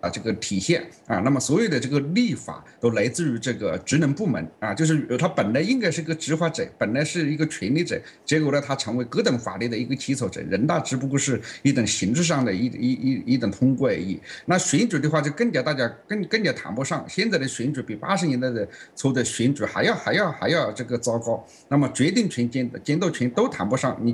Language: English